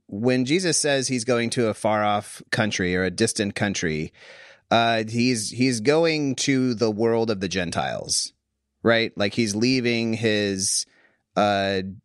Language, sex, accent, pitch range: English, male, American, 110-140 Hz